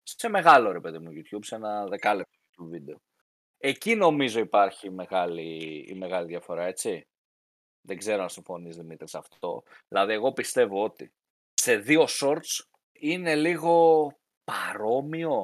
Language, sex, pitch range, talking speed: Greek, male, 120-170 Hz, 140 wpm